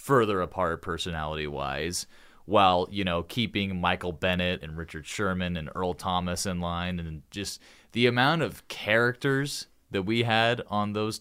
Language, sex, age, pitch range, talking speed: English, male, 30-49, 85-115 Hz, 150 wpm